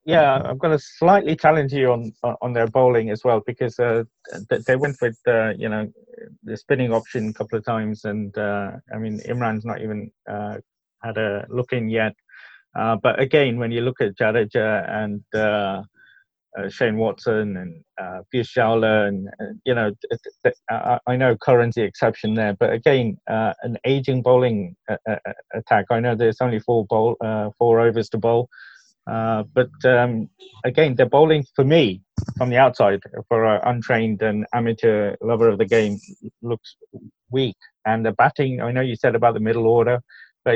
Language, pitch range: English, 110-125 Hz